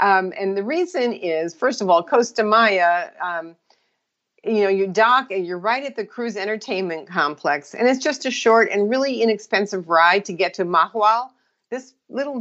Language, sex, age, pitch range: English, female, 50-69, 185-235 Hz